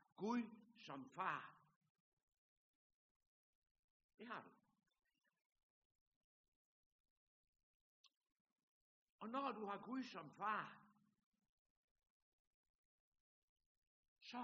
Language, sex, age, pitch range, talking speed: Danish, male, 60-79, 190-240 Hz, 60 wpm